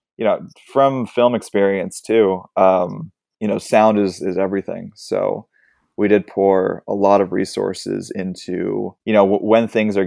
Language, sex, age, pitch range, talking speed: English, male, 20-39, 95-110 Hz, 165 wpm